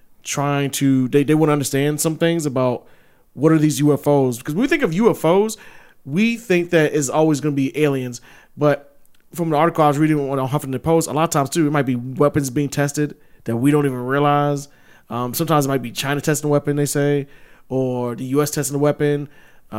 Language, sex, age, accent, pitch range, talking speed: English, male, 20-39, American, 130-155 Hz, 220 wpm